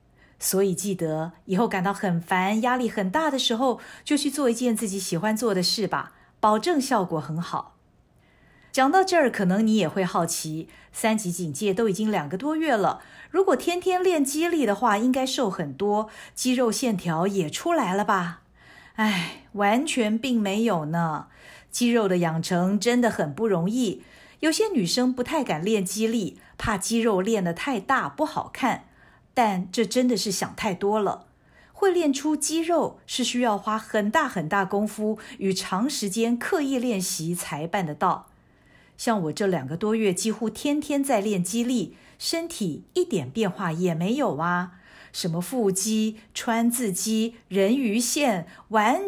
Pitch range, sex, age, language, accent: 190-250 Hz, female, 50-69, Chinese, native